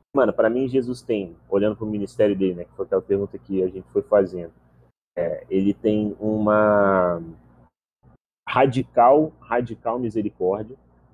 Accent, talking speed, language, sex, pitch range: Brazilian, 145 wpm, Portuguese, male, 95-115 Hz